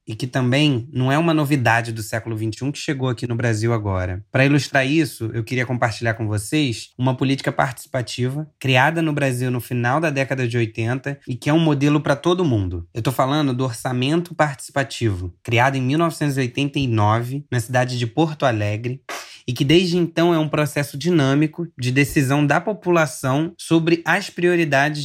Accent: Brazilian